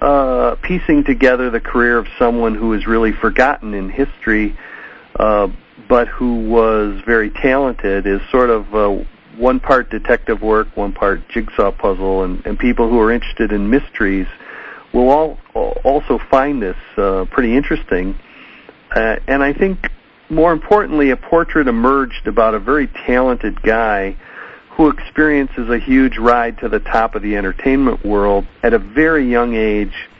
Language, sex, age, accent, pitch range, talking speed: English, male, 50-69, American, 105-130 Hz, 155 wpm